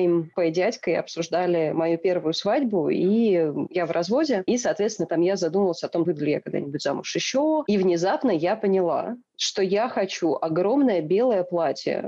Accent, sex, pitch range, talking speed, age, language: native, female, 170-220 Hz, 160 wpm, 20-39, Russian